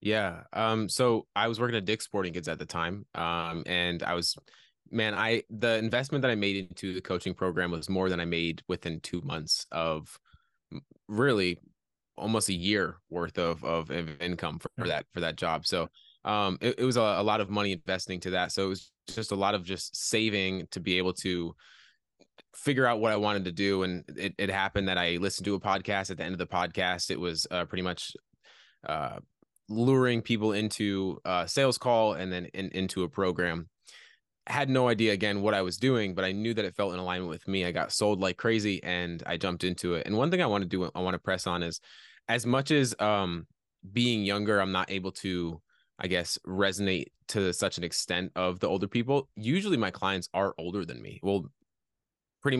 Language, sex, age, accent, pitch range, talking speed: English, male, 20-39, American, 90-110 Hz, 215 wpm